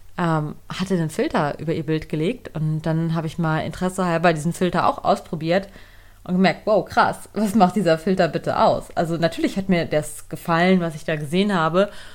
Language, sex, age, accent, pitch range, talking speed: German, female, 30-49, German, 170-230 Hz, 195 wpm